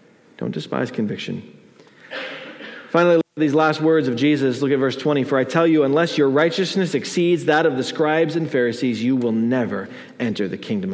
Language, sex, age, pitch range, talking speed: English, male, 40-59, 155-210 Hz, 190 wpm